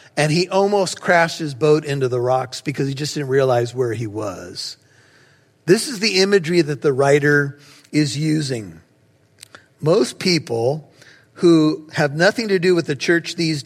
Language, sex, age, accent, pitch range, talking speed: English, male, 40-59, American, 135-185 Hz, 165 wpm